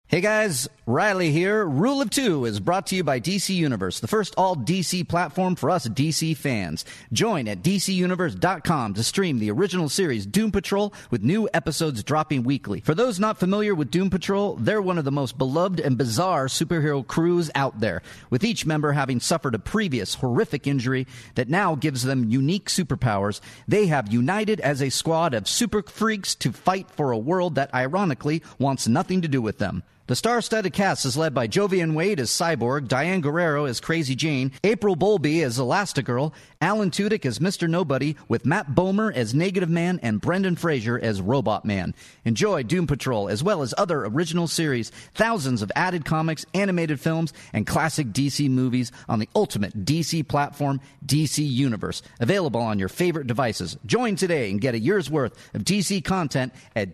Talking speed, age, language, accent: 180 wpm, 40-59, English, American